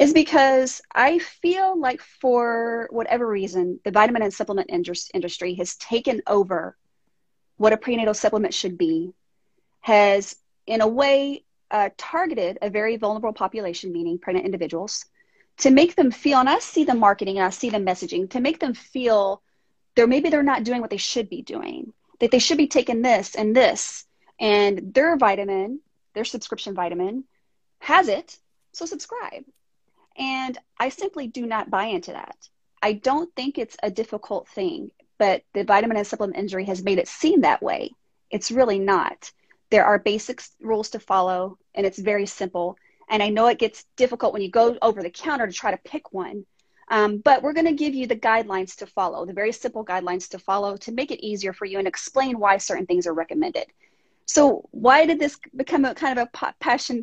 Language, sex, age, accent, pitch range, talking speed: English, female, 30-49, American, 195-265 Hz, 185 wpm